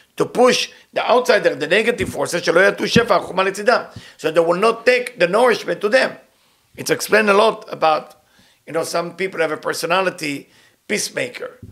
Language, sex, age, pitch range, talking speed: English, male, 50-69, 160-215 Hz, 150 wpm